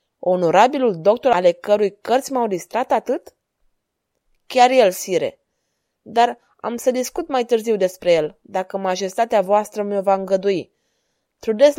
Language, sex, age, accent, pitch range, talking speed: Romanian, female, 20-39, native, 195-245 Hz, 130 wpm